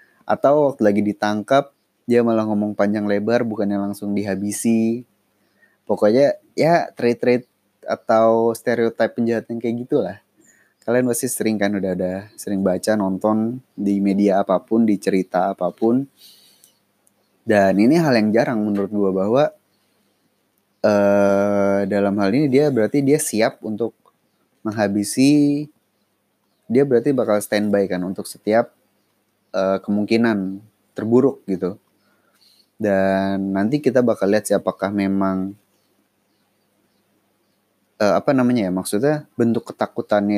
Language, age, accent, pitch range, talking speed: Indonesian, 20-39, native, 100-115 Hz, 115 wpm